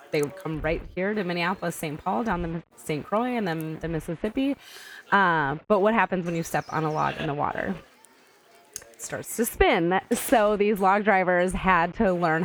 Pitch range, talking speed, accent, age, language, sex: 160-195 Hz, 195 wpm, American, 20-39, English, female